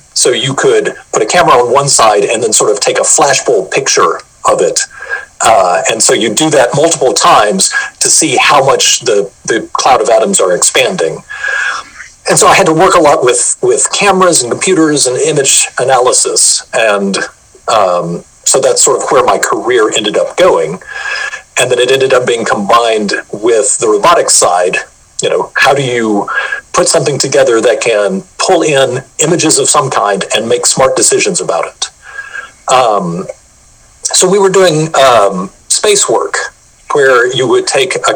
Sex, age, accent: male, 40-59, American